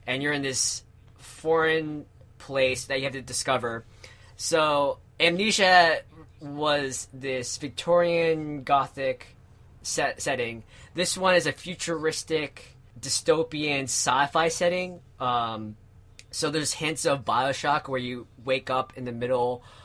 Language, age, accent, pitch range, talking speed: English, 20-39, American, 120-155 Hz, 120 wpm